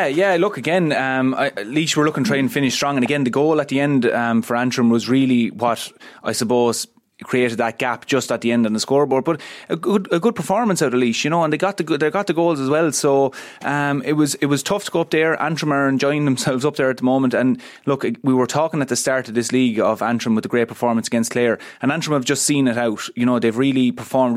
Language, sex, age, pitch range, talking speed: English, male, 20-39, 120-140 Hz, 270 wpm